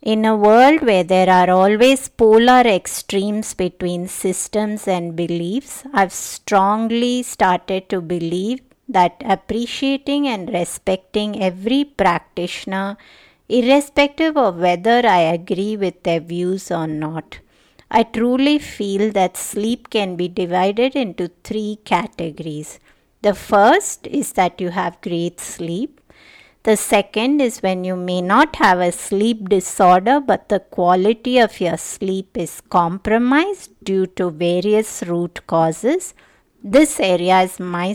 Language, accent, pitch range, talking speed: English, Indian, 180-230 Hz, 130 wpm